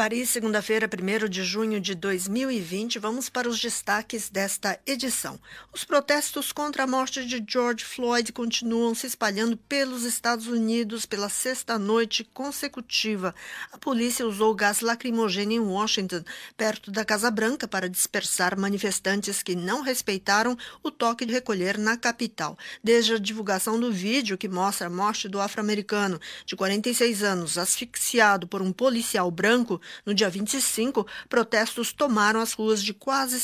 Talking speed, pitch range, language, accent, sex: 145 wpm, 200-240 Hz, Portuguese, Brazilian, female